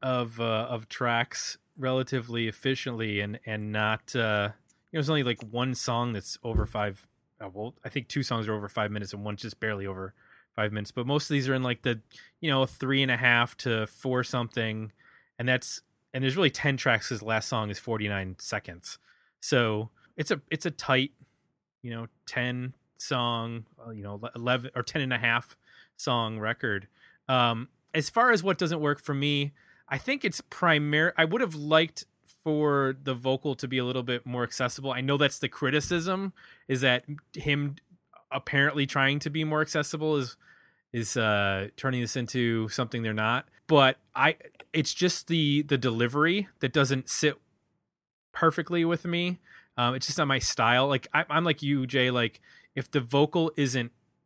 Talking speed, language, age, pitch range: 185 wpm, English, 20-39, 115-145 Hz